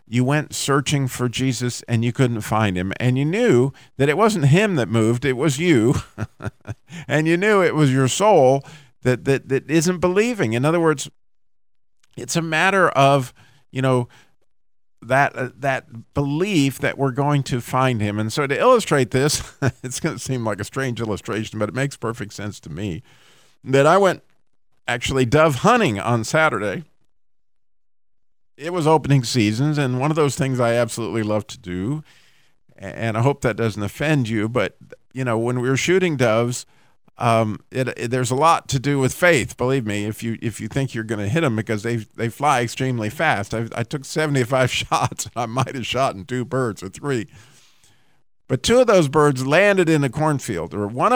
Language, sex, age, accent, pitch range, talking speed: English, male, 50-69, American, 115-145 Hz, 190 wpm